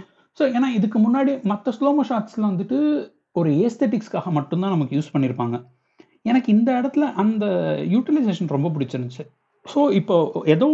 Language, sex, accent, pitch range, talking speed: Tamil, male, native, 150-230 Hz, 135 wpm